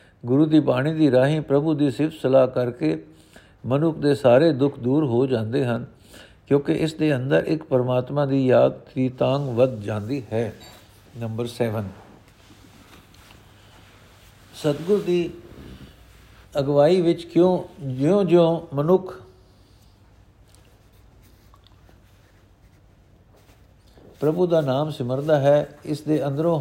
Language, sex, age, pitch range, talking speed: Punjabi, male, 60-79, 110-150 Hz, 110 wpm